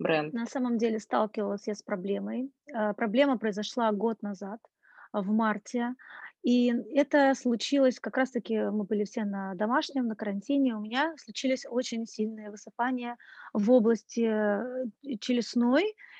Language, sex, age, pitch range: Russian, female, 20-39, 220-270 Hz